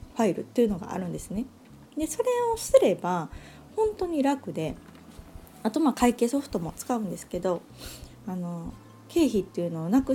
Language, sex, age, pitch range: Japanese, female, 20-39, 185-255 Hz